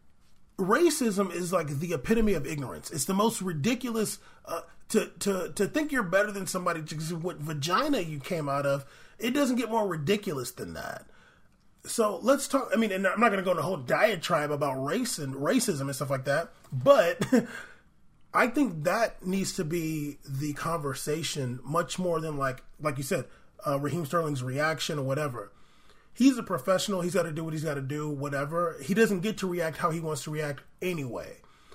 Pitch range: 150-215 Hz